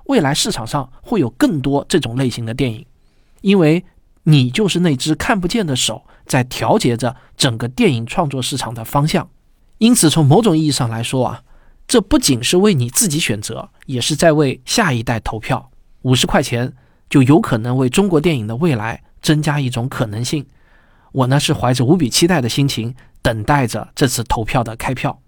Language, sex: Chinese, male